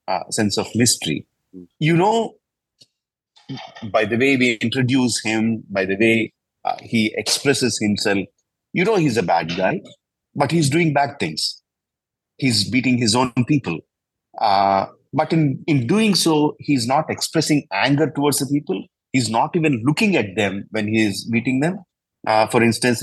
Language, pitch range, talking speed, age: English, 110-145 Hz, 160 wpm, 30-49